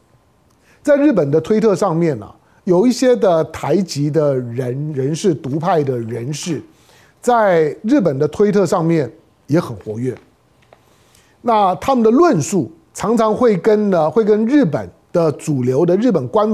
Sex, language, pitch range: male, Chinese, 155-230 Hz